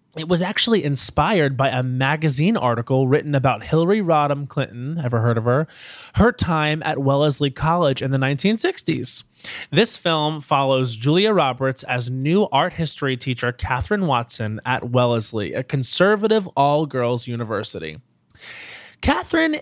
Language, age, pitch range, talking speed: English, 20-39, 125-160 Hz, 135 wpm